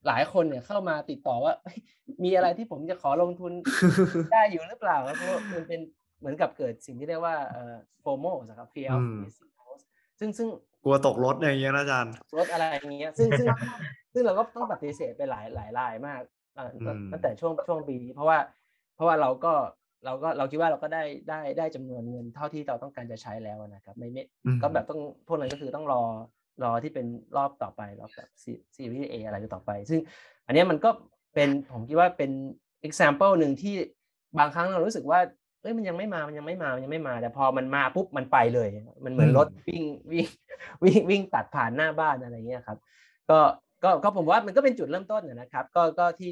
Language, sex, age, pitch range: Thai, male, 20-39, 125-175 Hz